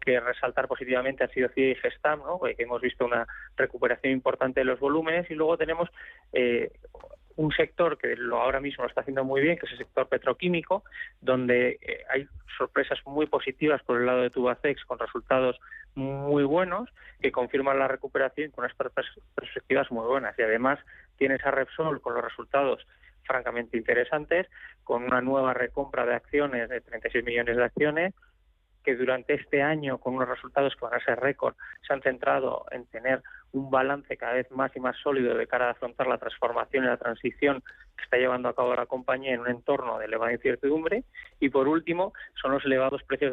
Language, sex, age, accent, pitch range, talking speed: Spanish, male, 20-39, Spanish, 125-150 Hz, 190 wpm